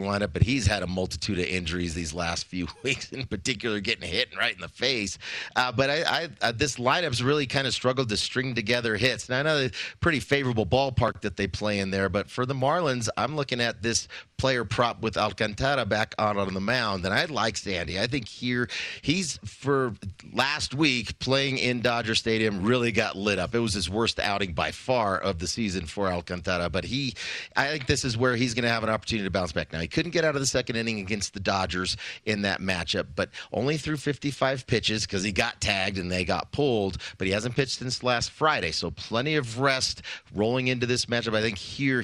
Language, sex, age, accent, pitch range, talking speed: English, male, 30-49, American, 95-125 Hz, 225 wpm